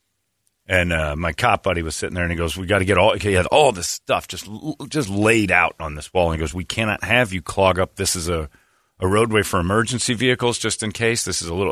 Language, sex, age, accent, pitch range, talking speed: English, male, 40-59, American, 80-110 Hz, 270 wpm